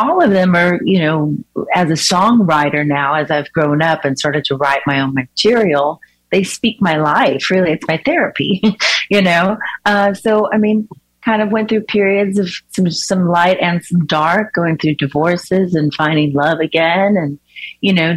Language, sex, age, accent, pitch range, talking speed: English, female, 40-59, American, 155-190 Hz, 190 wpm